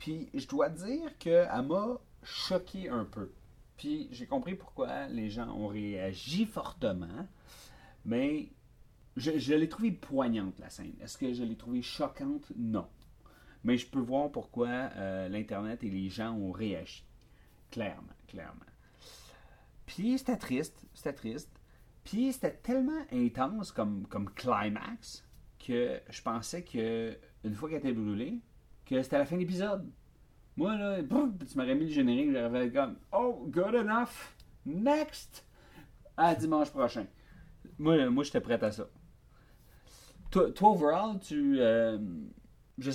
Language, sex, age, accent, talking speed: French, male, 40-59, Canadian, 145 wpm